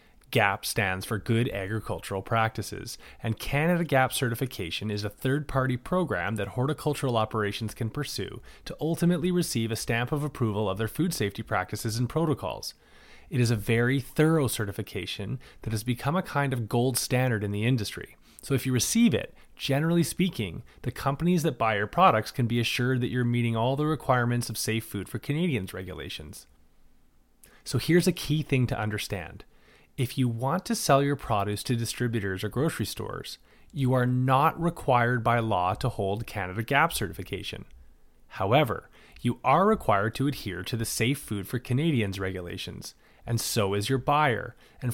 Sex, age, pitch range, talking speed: male, 30-49, 110-140 Hz, 170 wpm